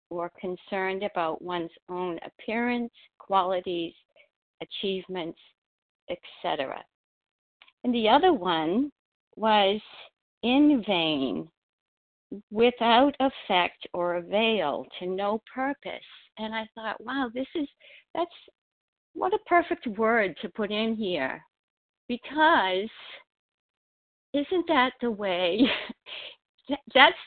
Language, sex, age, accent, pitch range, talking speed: English, female, 60-79, American, 185-265 Hz, 95 wpm